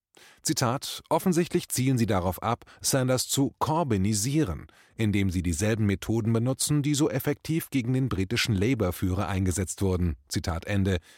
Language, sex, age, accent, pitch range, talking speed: German, male, 30-49, German, 95-135 Hz, 135 wpm